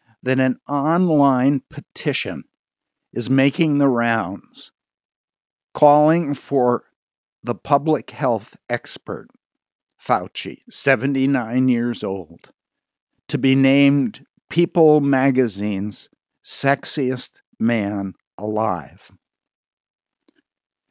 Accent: American